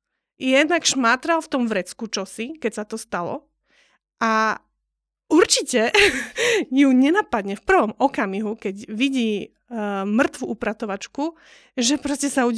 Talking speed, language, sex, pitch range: 115 wpm, Slovak, female, 215-275 Hz